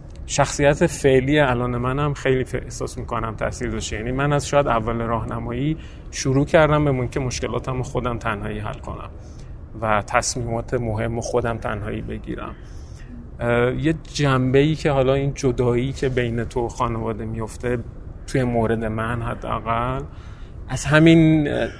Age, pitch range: 30-49, 115-135 Hz